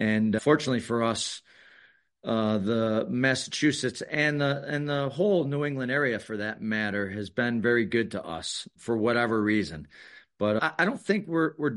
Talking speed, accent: 175 wpm, American